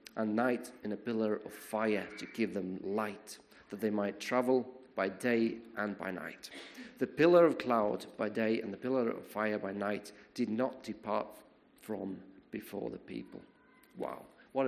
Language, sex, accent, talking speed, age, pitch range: English, male, British, 170 wpm, 40-59, 105-140 Hz